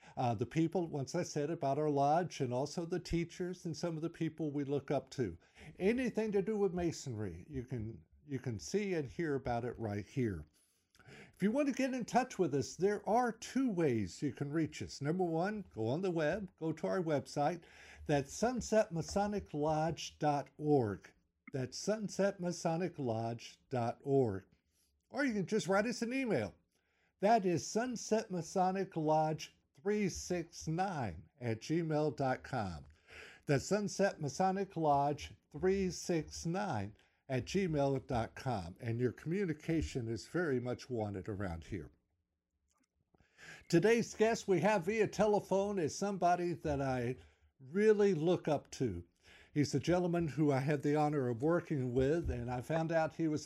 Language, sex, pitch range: English, male, 125-185 Hz